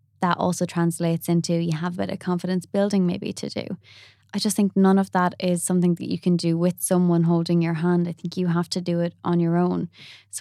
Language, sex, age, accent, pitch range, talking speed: English, female, 20-39, Irish, 165-185 Hz, 240 wpm